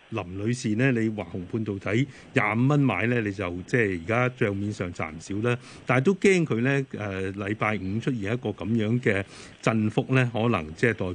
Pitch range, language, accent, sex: 95-125 Hz, Chinese, native, male